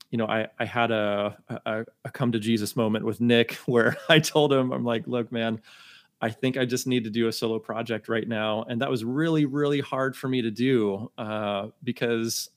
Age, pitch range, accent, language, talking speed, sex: 30-49, 105-125 Hz, American, English, 220 wpm, male